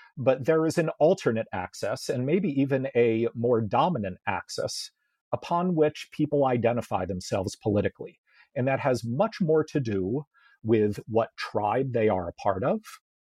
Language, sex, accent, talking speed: English, male, American, 155 wpm